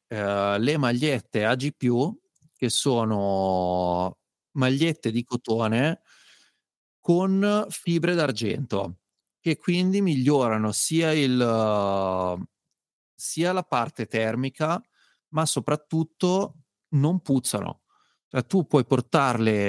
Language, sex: Italian, male